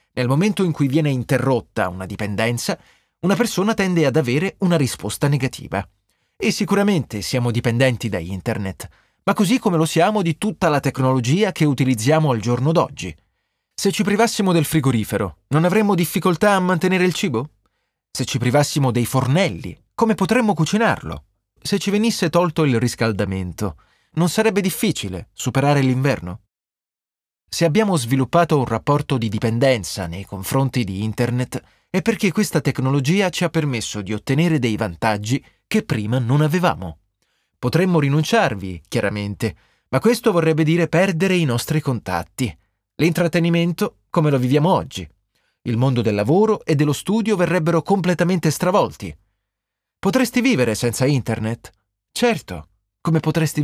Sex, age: male, 30-49